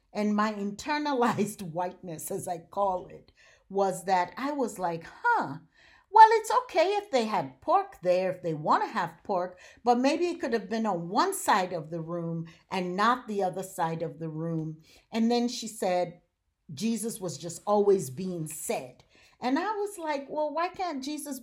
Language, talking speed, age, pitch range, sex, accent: English, 185 wpm, 50-69, 190-265 Hz, female, American